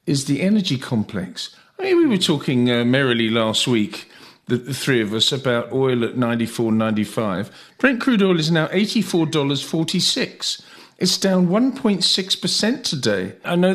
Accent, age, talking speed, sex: British, 40-59, 160 wpm, male